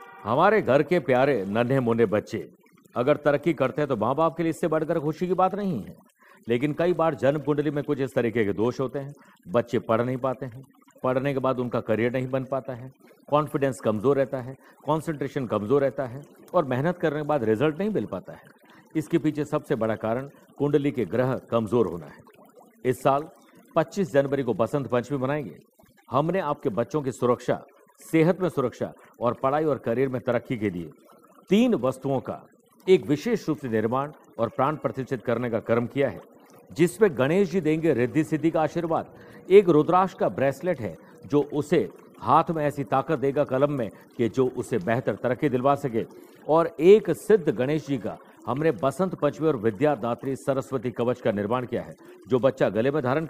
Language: Hindi